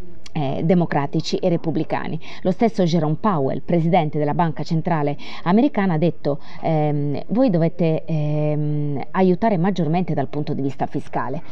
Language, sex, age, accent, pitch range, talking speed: Italian, female, 30-49, native, 145-180 Hz, 135 wpm